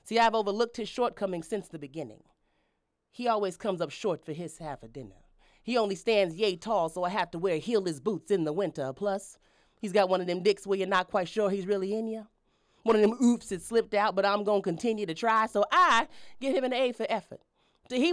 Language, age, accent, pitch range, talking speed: English, 30-49, American, 190-245 Hz, 240 wpm